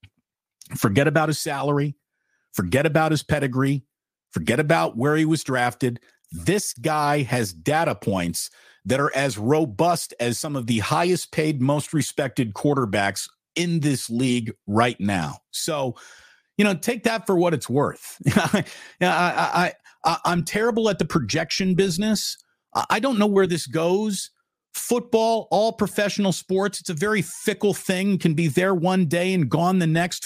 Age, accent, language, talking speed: 50-69, American, English, 150 wpm